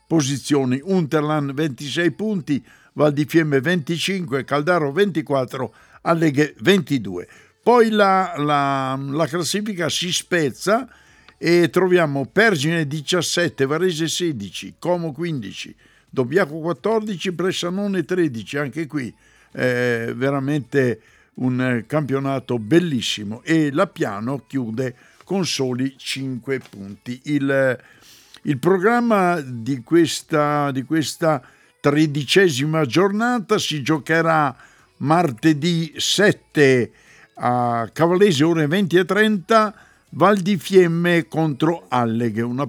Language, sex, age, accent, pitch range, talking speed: Italian, male, 60-79, native, 135-180 Hz, 95 wpm